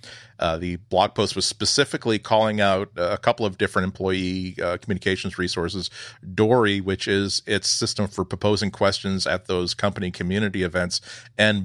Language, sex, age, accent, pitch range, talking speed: English, male, 40-59, American, 95-110 Hz, 155 wpm